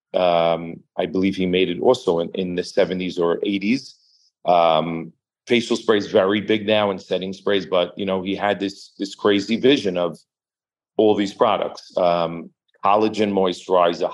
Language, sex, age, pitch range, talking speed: English, male, 40-59, 90-110 Hz, 160 wpm